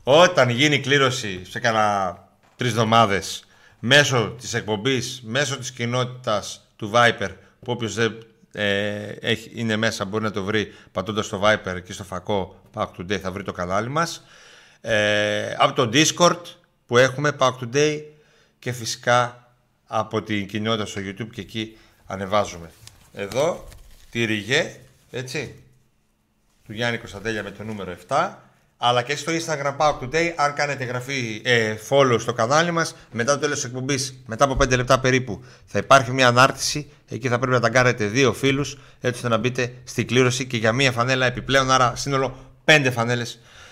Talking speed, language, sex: 160 wpm, Greek, male